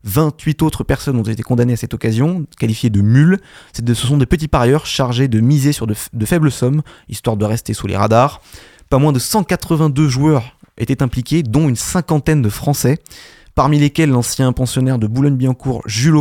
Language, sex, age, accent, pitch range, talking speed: French, male, 20-39, French, 115-150 Hz, 180 wpm